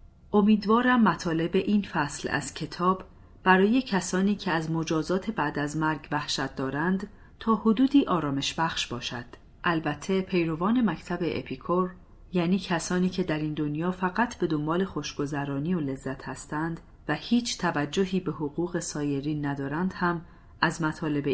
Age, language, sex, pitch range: 40-59, Persian, female, 140-185 Hz